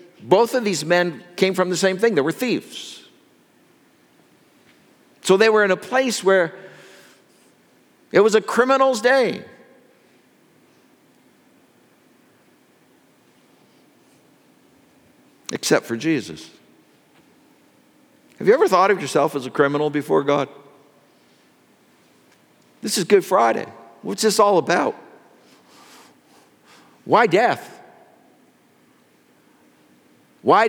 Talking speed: 95 wpm